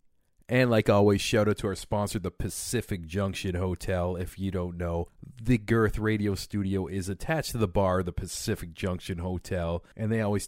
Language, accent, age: English, American, 30-49